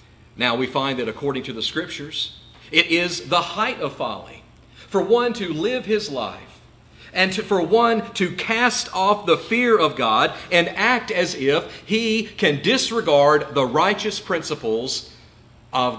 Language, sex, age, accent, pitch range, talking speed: English, male, 40-59, American, 135-200 Hz, 155 wpm